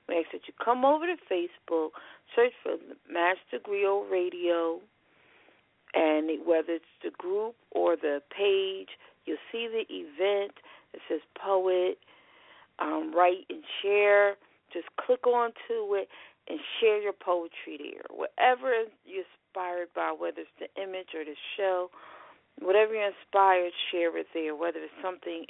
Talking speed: 140 wpm